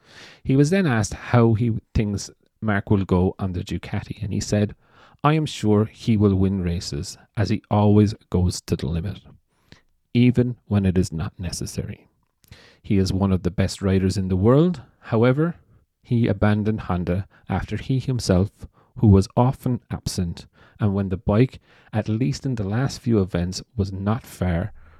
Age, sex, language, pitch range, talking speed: 30-49, male, English, 95-115 Hz, 170 wpm